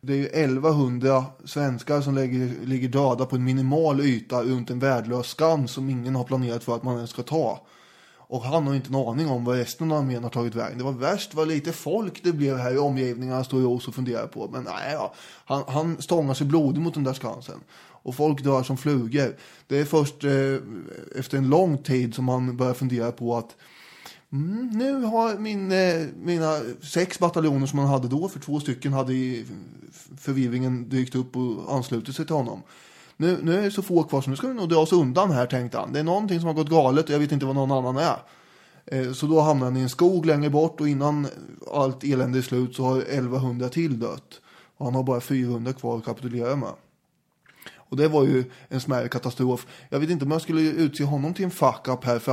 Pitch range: 125-155 Hz